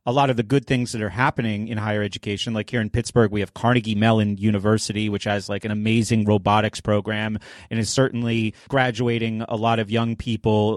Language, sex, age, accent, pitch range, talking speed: English, male, 30-49, American, 110-130 Hz, 205 wpm